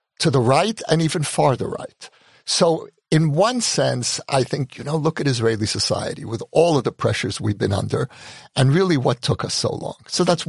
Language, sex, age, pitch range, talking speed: English, male, 60-79, 110-145 Hz, 205 wpm